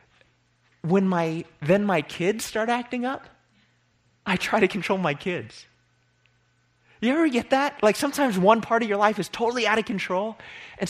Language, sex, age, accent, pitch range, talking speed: English, male, 30-49, American, 140-225 Hz, 170 wpm